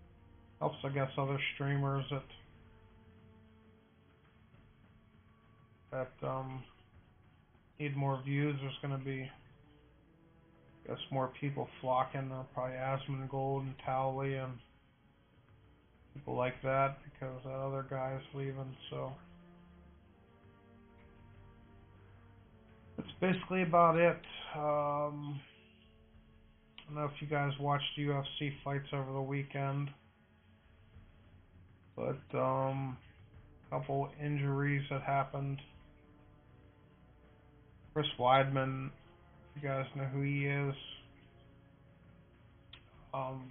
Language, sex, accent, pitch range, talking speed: English, male, American, 110-145 Hz, 95 wpm